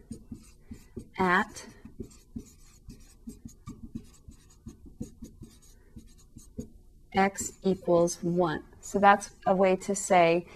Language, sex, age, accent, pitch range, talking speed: English, female, 40-59, American, 180-220 Hz, 55 wpm